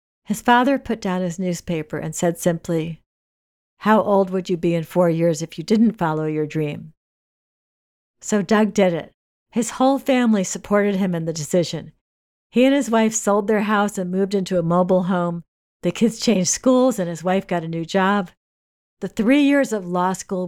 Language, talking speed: English, 190 wpm